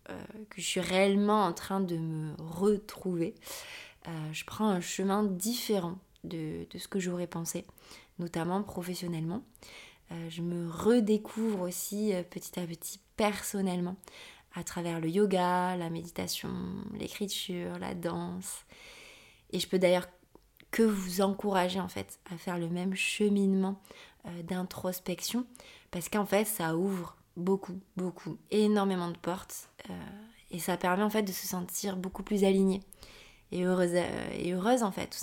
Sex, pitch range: female, 180-210 Hz